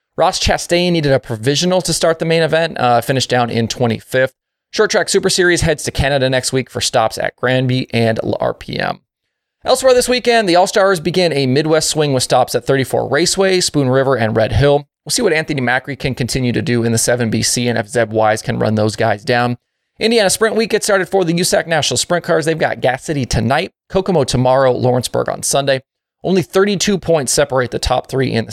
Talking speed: 210 wpm